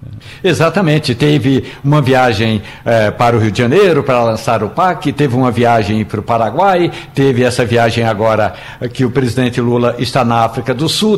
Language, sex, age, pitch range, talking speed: Portuguese, male, 60-79, 120-165 Hz, 170 wpm